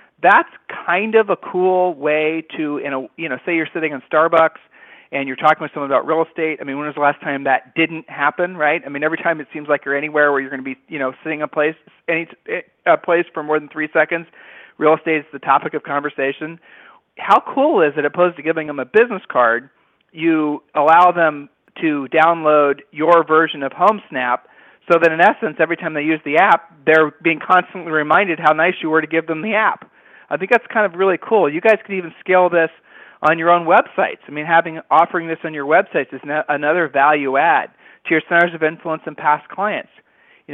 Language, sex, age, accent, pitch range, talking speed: English, male, 40-59, American, 140-165 Hz, 220 wpm